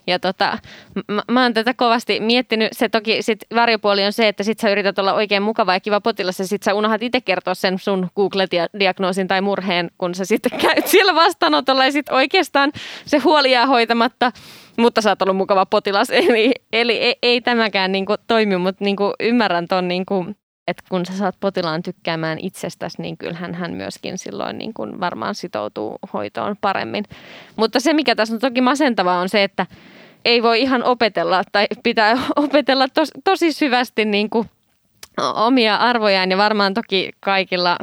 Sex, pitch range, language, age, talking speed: female, 185-235 Hz, Finnish, 20-39, 170 wpm